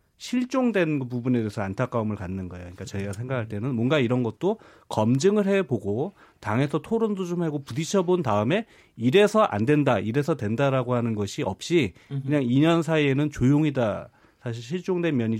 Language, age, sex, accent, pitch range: Korean, 40-59, male, native, 115-165 Hz